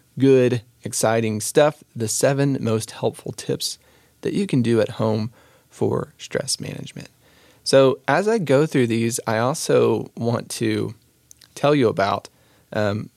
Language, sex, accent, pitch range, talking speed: English, male, American, 110-135 Hz, 140 wpm